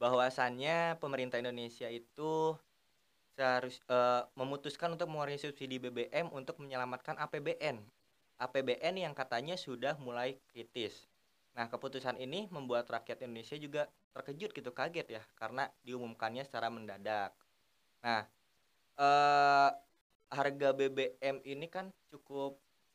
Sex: male